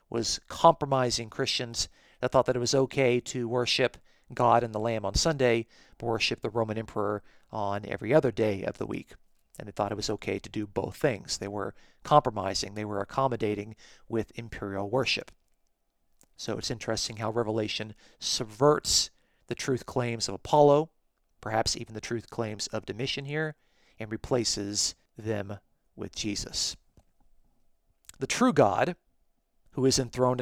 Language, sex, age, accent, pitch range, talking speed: English, male, 40-59, American, 105-135 Hz, 155 wpm